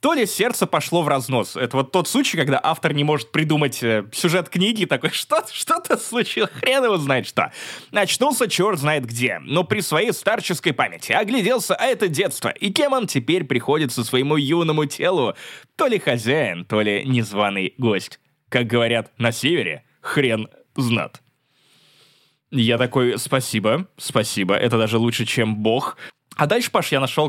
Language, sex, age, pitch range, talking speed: Russian, male, 20-39, 110-155 Hz, 165 wpm